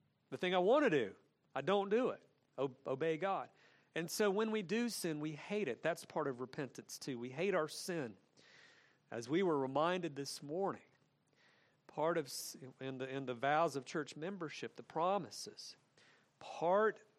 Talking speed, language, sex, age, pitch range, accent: 170 wpm, English, male, 50-69, 130-155 Hz, American